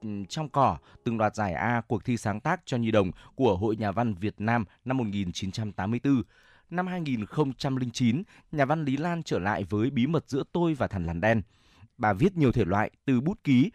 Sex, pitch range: male, 100-135 Hz